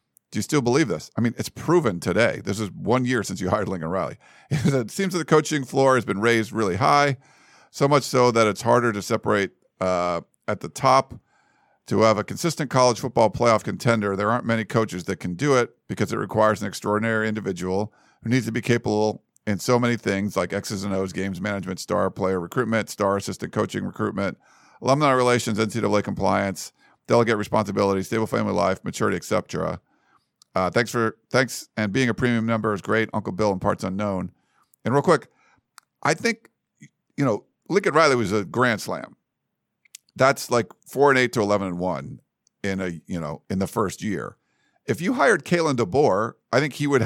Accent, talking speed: American, 195 wpm